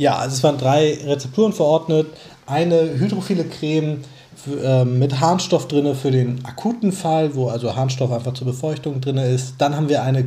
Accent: German